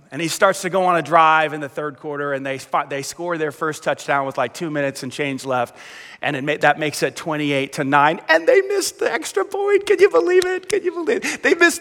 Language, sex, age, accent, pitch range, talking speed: English, male, 30-49, American, 195-270 Hz, 260 wpm